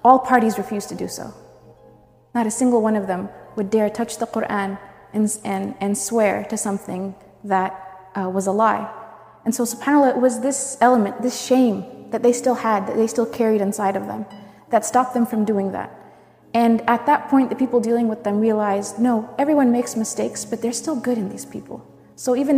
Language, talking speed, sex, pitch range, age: English, 205 wpm, female, 205-240 Hz, 30-49